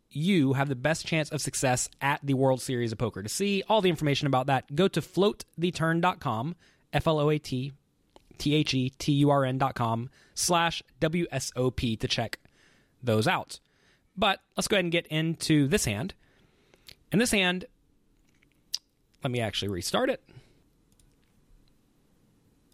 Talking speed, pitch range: 125 wpm, 130-180 Hz